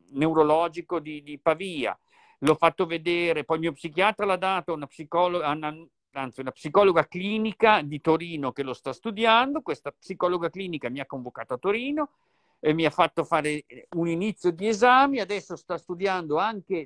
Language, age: Italian, 50-69